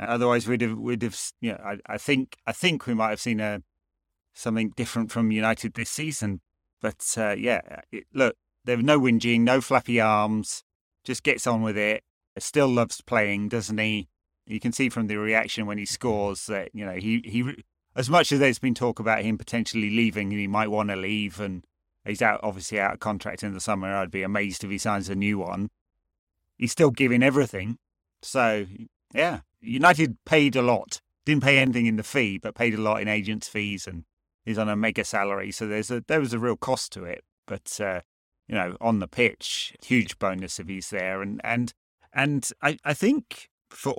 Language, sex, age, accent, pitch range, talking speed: English, male, 30-49, British, 100-120 Hz, 205 wpm